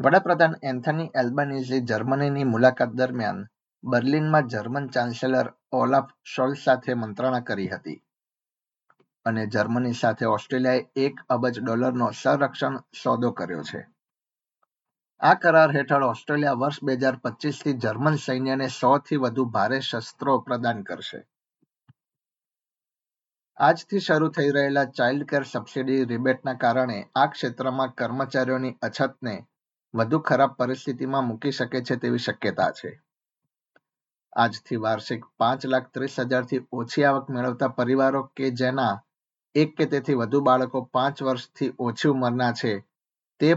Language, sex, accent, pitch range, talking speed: Gujarati, male, native, 125-140 Hz, 95 wpm